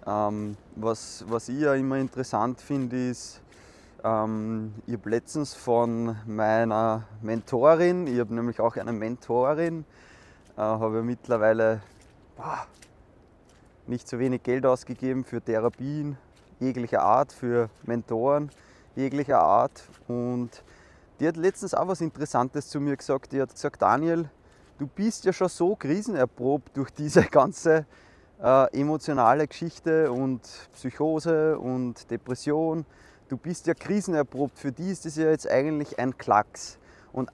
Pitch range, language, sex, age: 120-155 Hz, German, male, 20-39